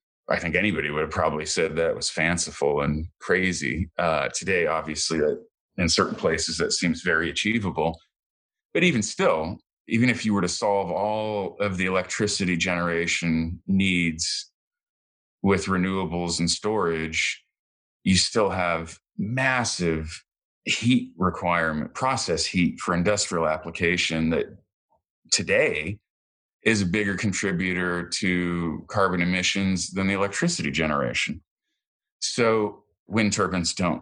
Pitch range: 85-100 Hz